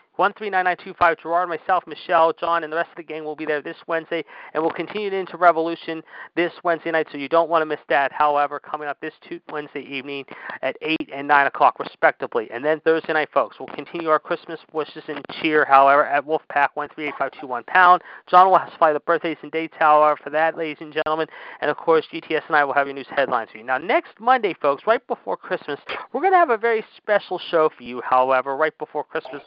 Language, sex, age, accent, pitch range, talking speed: English, male, 40-59, American, 145-170 Hz, 220 wpm